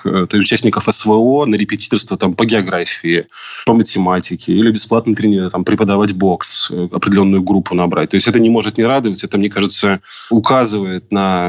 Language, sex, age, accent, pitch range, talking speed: Russian, male, 20-39, native, 95-115 Hz, 140 wpm